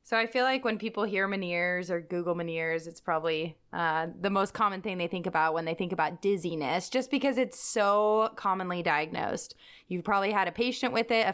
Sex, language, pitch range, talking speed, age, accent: female, English, 180-220 Hz, 210 wpm, 20-39, American